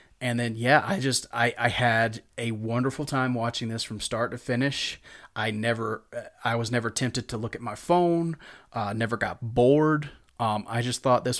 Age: 30-49